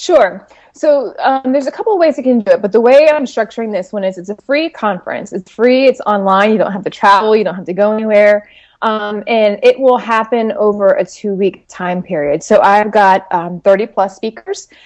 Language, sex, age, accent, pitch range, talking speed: English, female, 20-39, American, 190-230 Hz, 230 wpm